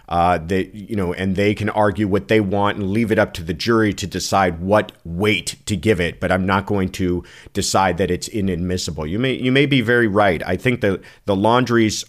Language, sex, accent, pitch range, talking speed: English, male, American, 90-110 Hz, 230 wpm